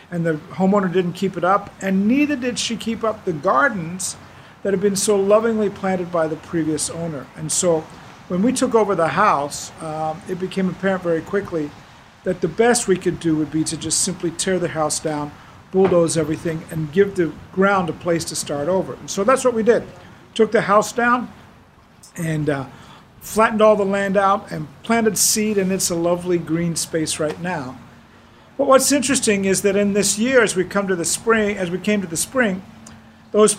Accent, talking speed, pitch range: American, 195 wpm, 165-215 Hz